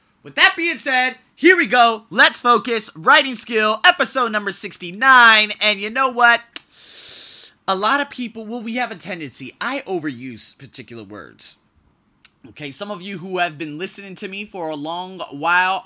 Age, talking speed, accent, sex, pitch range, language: 30-49, 170 wpm, American, male, 155-225 Hz, English